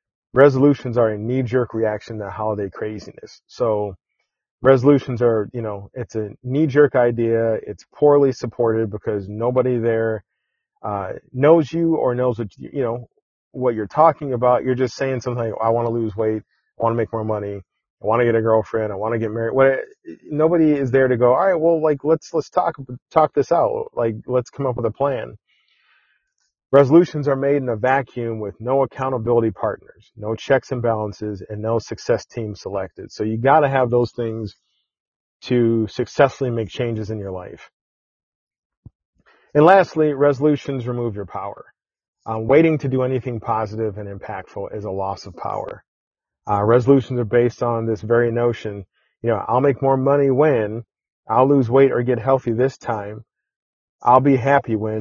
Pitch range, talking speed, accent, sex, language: 110-135 Hz, 180 wpm, American, male, English